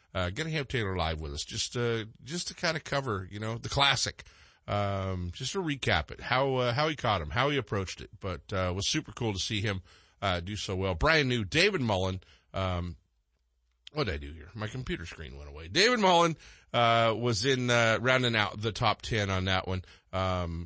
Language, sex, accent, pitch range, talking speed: English, male, American, 90-120 Hz, 220 wpm